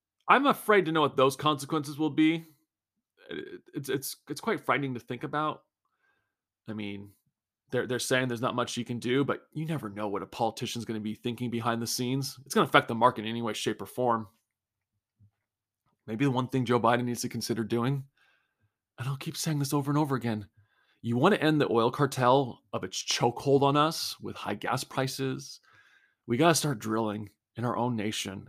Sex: male